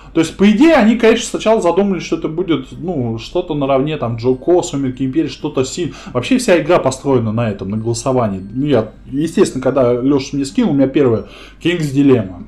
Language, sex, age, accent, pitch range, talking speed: Russian, male, 20-39, native, 130-185 Hz, 195 wpm